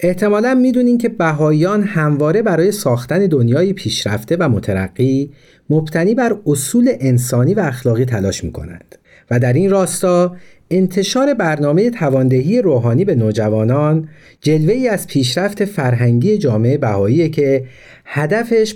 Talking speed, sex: 120 wpm, male